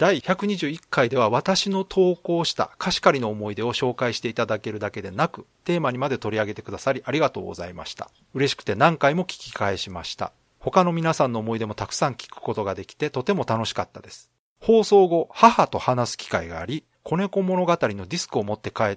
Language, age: Japanese, 40-59